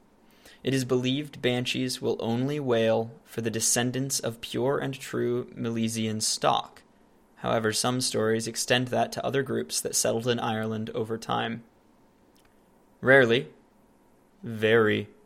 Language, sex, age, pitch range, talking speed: English, male, 20-39, 110-125 Hz, 125 wpm